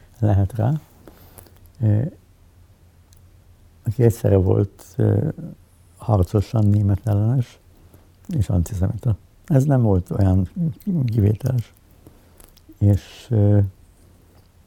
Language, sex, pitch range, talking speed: Hungarian, male, 90-105 Hz, 75 wpm